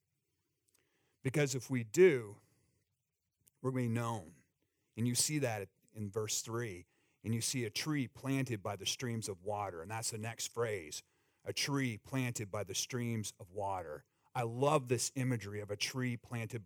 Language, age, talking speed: English, 40-59, 175 wpm